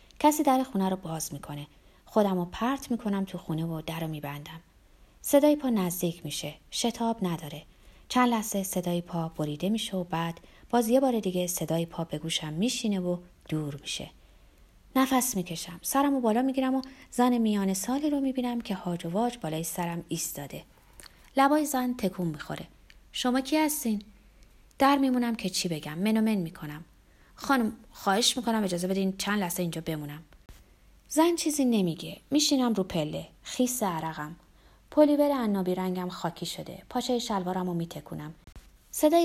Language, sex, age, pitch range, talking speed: Persian, female, 30-49, 170-250 Hz, 155 wpm